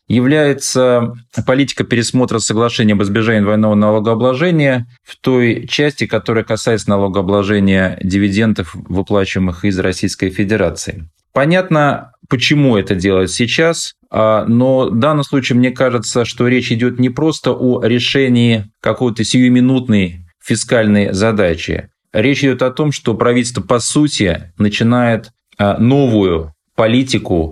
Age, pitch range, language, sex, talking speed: 20-39, 100-120 Hz, Russian, male, 115 wpm